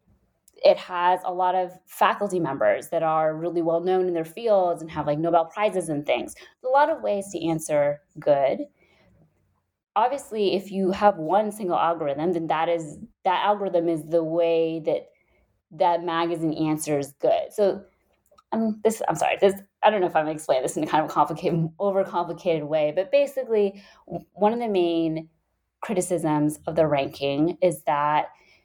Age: 20-39